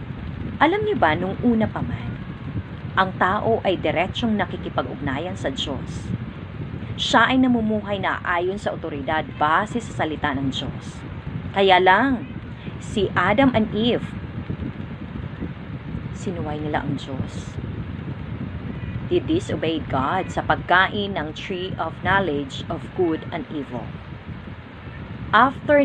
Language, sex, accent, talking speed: Filipino, female, native, 115 wpm